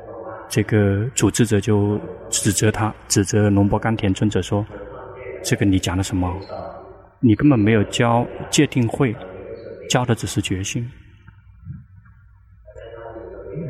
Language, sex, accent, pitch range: Chinese, male, native, 100-120 Hz